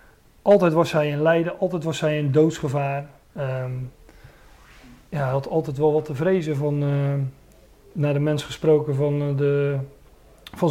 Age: 40-59